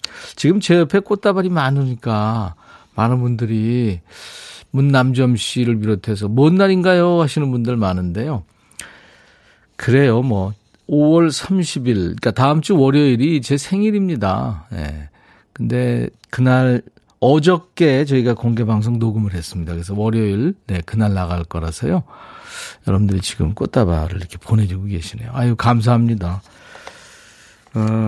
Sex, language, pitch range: male, Korean, 105-150 Hz